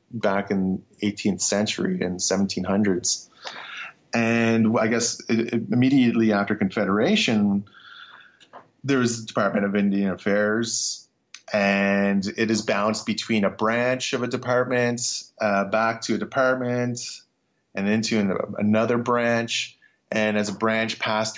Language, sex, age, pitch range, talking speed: English, male, 30-49, 105-125 Hz, 120 wpm